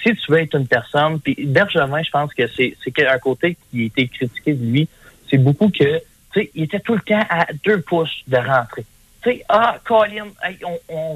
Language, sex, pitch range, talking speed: French, male, 130-170 Hz, 215 wpm